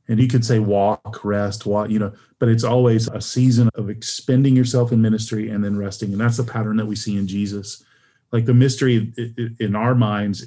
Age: 30-49